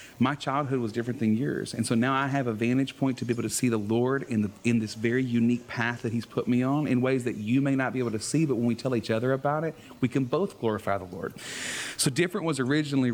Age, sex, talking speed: 30-49, male, 280 wpm